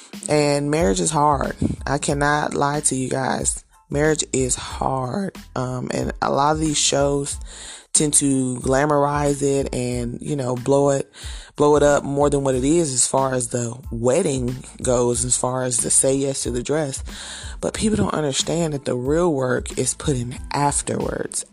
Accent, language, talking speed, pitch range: American, English, 175 wpm, 125-150 Hz